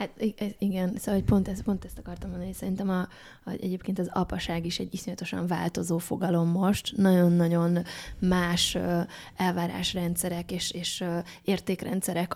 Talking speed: 130 wpm